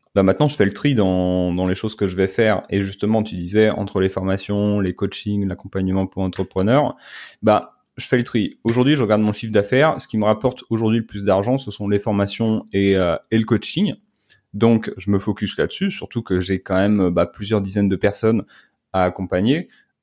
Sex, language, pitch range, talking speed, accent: male, French, 95-115 Hz, 215 wpm, French